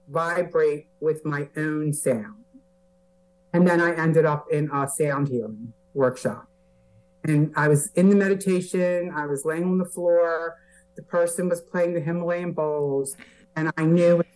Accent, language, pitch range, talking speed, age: American, English, 150-180 Hz, 160 wpm, 50-69